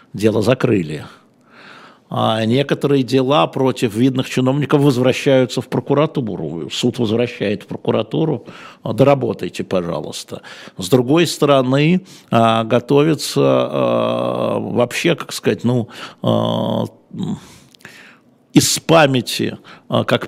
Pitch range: 115-140 Hz